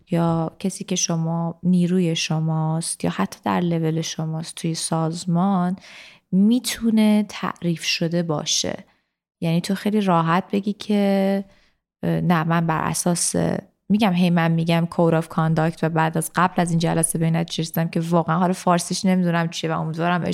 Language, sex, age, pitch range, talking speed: Persian, female, 20-39, 165-195 Hz, 145 wpm